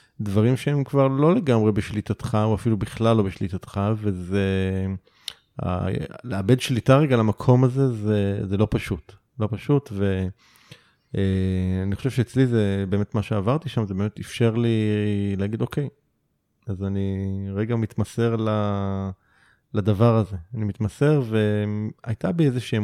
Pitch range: 105-125 Hz